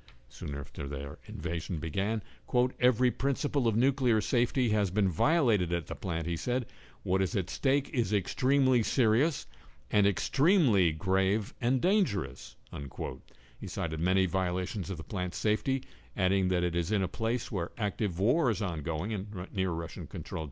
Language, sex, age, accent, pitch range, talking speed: English, male, 60-79, American, 85-120 Hz, 165 wpm